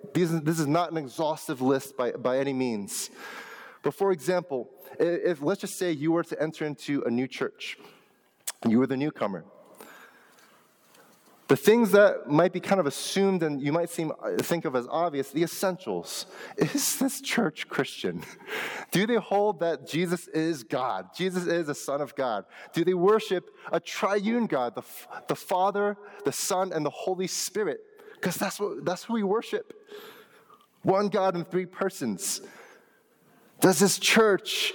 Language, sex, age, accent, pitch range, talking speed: English, male, 20-39, American, 155-200 Hz, 170 wpm